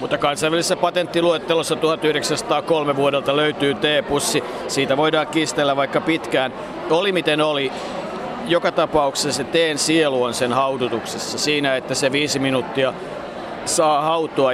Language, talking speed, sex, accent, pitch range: Finnish, 125 wpm, male, native, 135-160 Hz